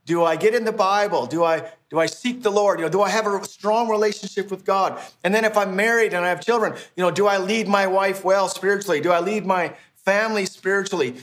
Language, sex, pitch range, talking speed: English, male, 160-195 Hz, 250 wpm